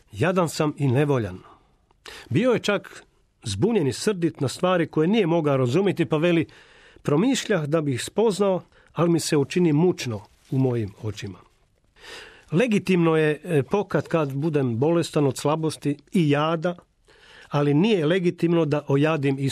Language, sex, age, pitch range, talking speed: Croatian, male, 40-59, 140-185 Hz, 145 wpm